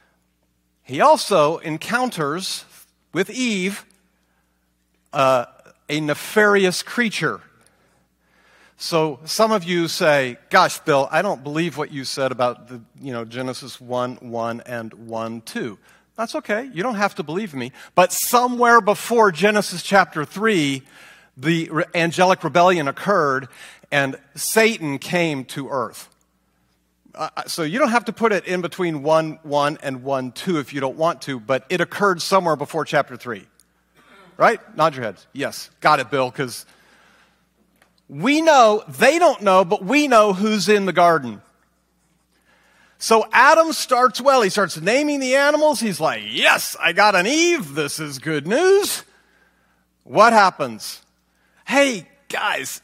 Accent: American